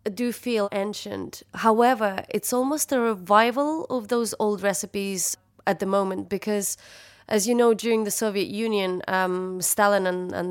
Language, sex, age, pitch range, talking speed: English, female, 20-39, 180-205 Hz, 155 wpm